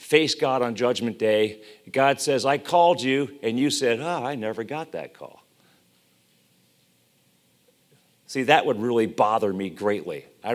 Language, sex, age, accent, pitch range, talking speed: English, male, 50-69, American, 120-155 Hz, 155 wpm